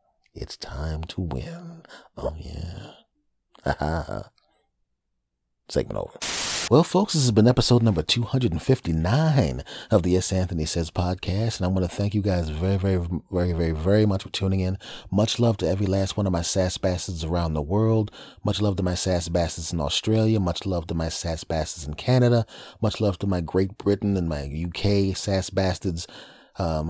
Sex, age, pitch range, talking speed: male, 30-49, 90-115 Hz, 185 wpm